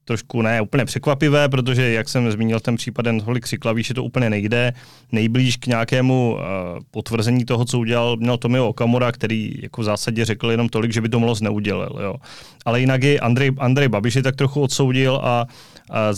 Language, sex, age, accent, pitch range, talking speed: Czech, male, 30-49, native, 115-125 Hz, 195 wpm